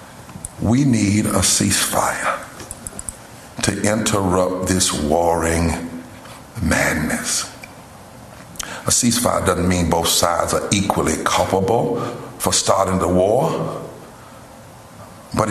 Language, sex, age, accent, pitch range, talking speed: English, male, 60-79, American, 95-135 Hz, 90 wpm